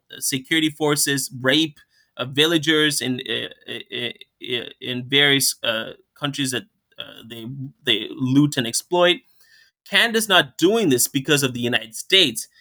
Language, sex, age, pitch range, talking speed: English, male, 20-39, 125-155 Hz, 140 wpm